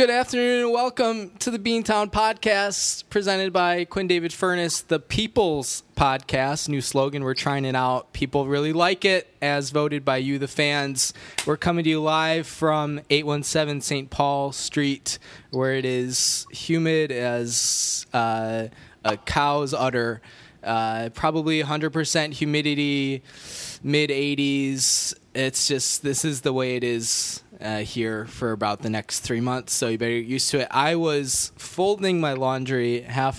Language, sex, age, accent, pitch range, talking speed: English, male, 20-39, American, 120-155 Hz, 155 wpm